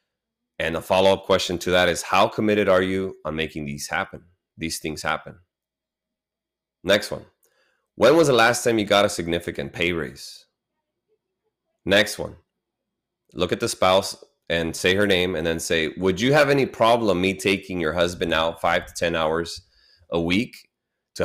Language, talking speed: English, 170 wpm